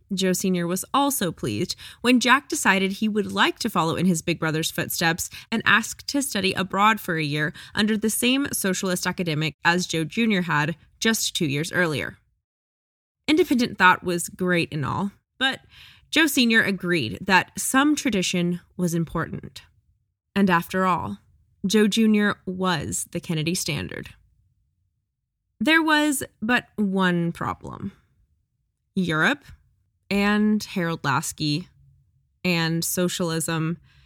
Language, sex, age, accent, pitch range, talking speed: English, female, 20-39, American, 165-220 Hz, 130 wpm